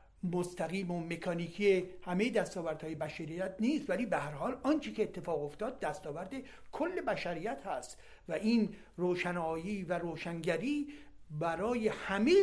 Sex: male